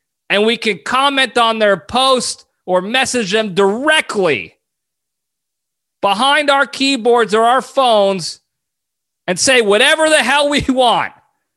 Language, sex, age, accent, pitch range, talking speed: English, male, 30-49, American, 180-255 Hz, 125 wpm